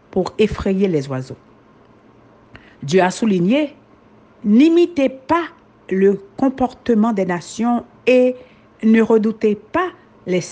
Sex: female